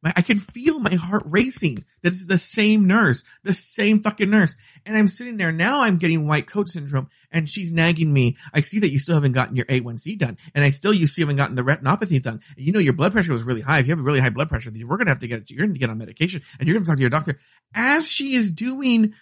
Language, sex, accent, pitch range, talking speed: English, male, American, 125-195 Hz, 285 wpm